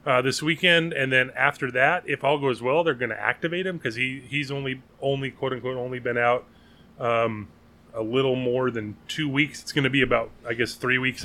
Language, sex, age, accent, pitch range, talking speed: English, male, 30-49, American, 120-140 Hz, 215 wpm